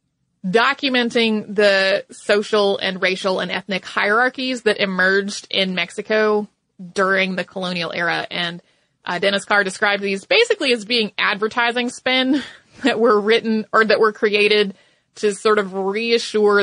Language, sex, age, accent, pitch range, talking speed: English, female, 30-49, American, 195-235 Hz, 135 wpm